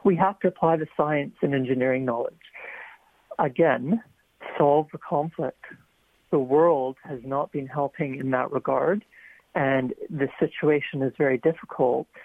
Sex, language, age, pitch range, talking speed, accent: male, English, 50-69, 135-165 Hz, 135 wpm, American